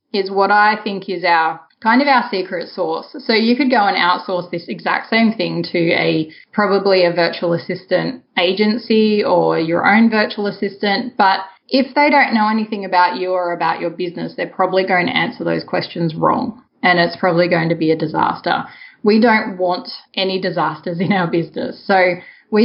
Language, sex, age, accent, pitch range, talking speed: English, female, 20-39, Australian, 175-220 Hz, 190 wpm